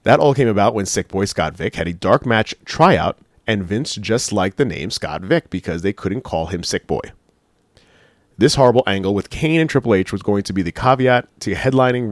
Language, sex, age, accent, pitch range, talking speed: English, male, 30-49, American, 85-110 Hz, 225 wpm